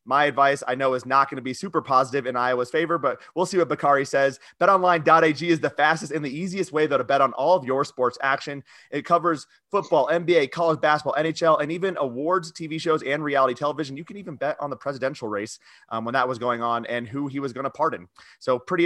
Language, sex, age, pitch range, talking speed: English, male, 30-49, 135-170 Hz, 240 wpm